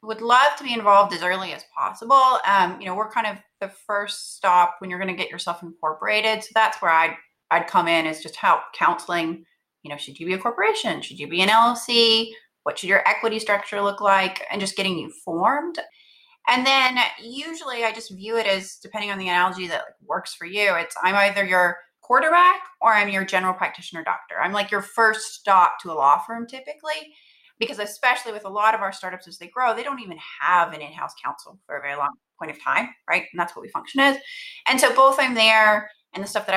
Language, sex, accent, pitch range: English, female, American, 180-230 Hz